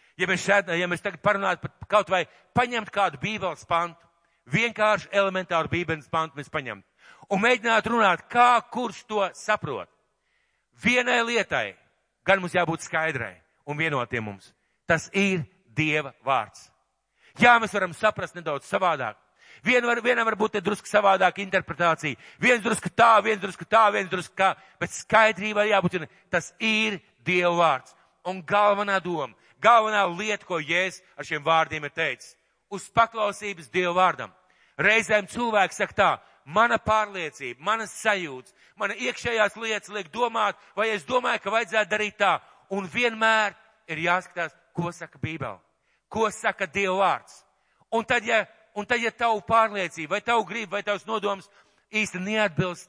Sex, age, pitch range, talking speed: male, 50-69, 170-215 Hz, 145 wpm